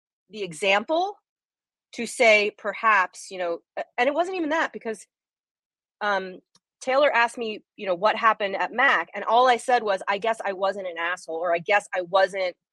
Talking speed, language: 185 wpm, English